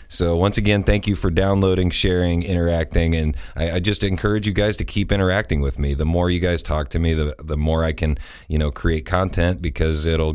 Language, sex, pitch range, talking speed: English, male, 80-95 Hz, 225 wpm